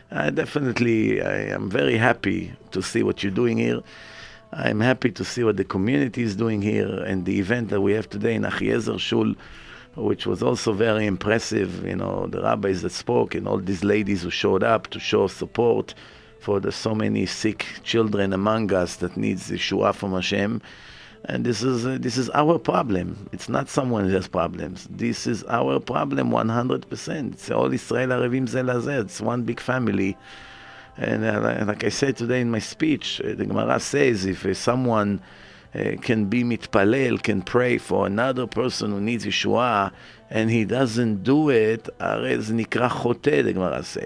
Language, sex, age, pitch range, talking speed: English, male, 50-69, 100-120 Hz, 170 wpm